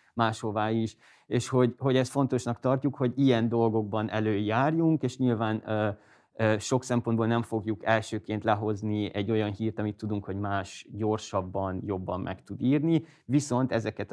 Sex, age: male, 30-49